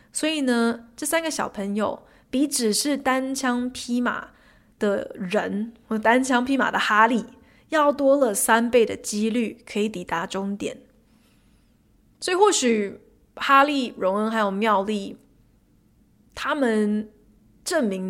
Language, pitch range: Chinese, 215-275 Hz